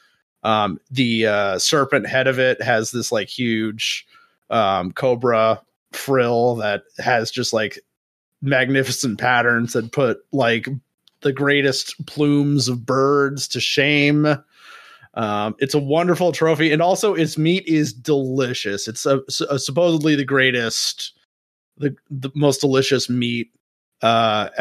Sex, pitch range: male, 110-140 Hz